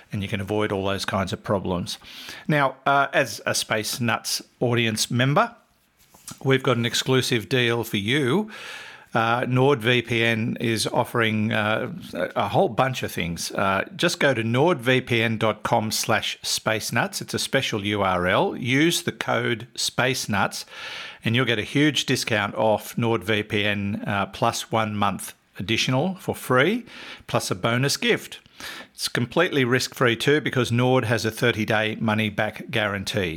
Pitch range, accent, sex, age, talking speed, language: 105-130 Hz, Australian, male, 50-69, 145 wpm, English